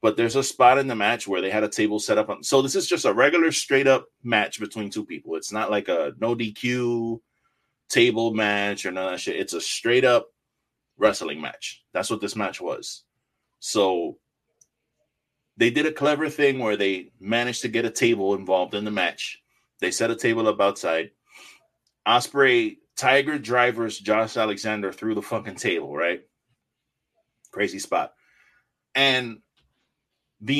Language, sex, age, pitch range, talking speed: English, male, 30-49, 110-145 Hz, 165 wpm